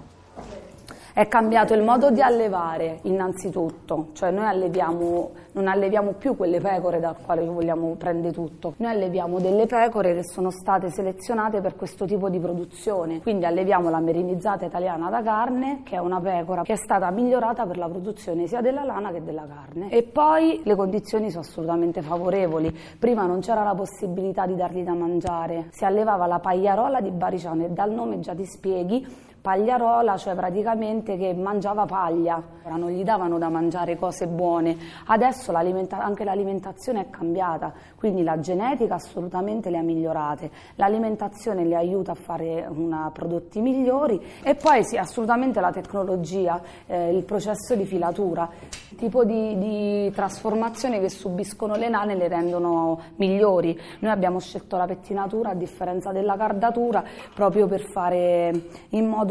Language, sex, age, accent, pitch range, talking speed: Italian, female, 30-49, native, 175-210 Hz, 160 wpm